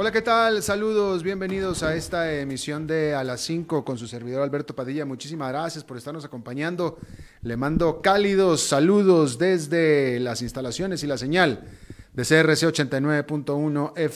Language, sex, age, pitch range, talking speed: Spanish, male, 30-49, 125-165 Hz, 150 wpm